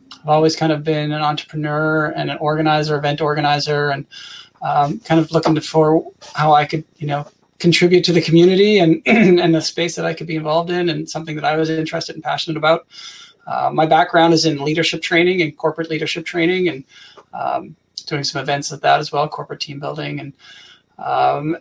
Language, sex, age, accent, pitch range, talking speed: English, male, 20-39, American, 140-165 Hz, 195 wpm